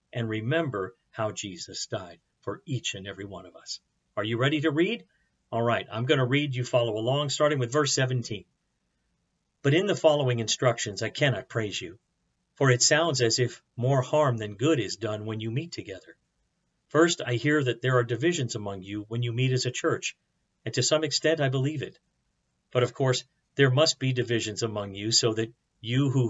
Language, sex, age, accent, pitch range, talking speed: English, male, 50-69, American, 115-150 Hz, 205 wpm